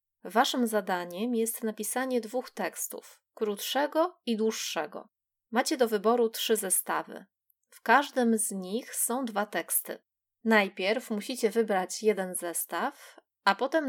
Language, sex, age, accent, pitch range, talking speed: Polish, female, 20-39, native, 200-245 Hz, 120 wpm